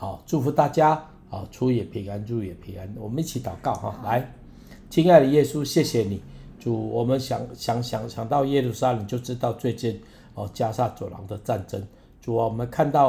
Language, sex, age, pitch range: Chinese, male, 60-79, 110-130 Hz